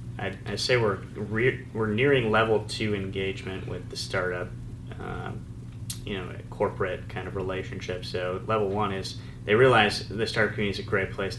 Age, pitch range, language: 30-49, 95-115 Hz, English